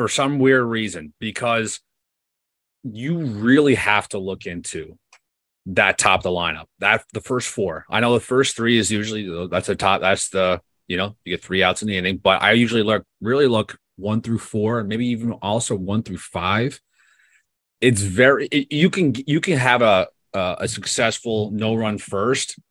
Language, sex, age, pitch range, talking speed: English, male, 30-49, 105-130 Hz, 190 wpm